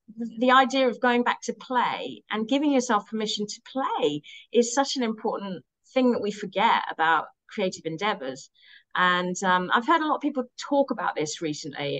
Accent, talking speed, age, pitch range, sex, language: British, 180 wpm, 30-49, 165-250 Hz, female, English